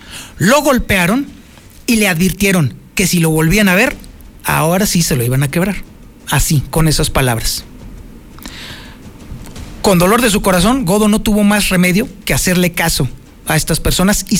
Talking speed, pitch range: 165 wpm, 160-215 Hz